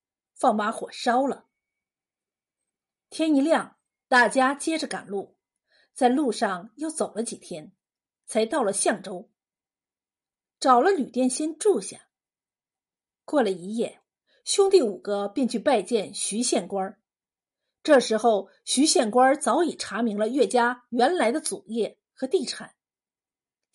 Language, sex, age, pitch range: Chinese, female, 50-69, 225-315 Hz